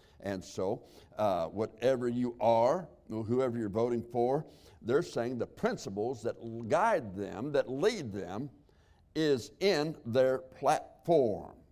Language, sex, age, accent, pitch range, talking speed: English, male, 60-79, American, 80-135 Hz, 125 wpm